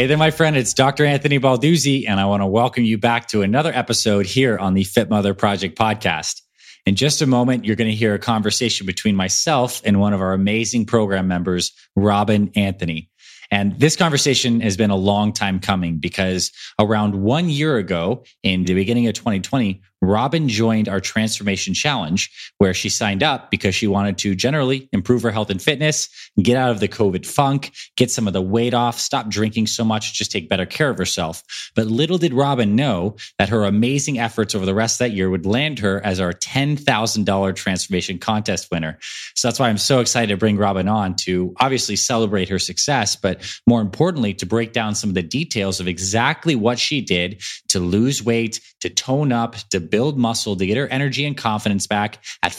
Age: 20-39